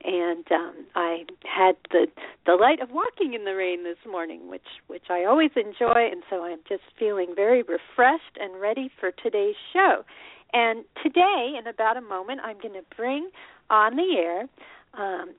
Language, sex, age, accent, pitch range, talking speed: English, female, 50-69, American, 195-310 Hz, 170 wpm